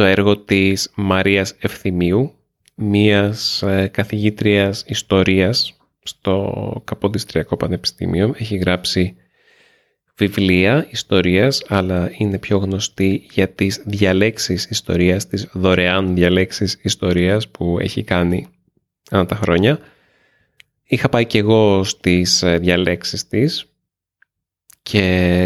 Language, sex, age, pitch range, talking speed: Greek, male, 20-39, 95-105 Hz, 95 wpm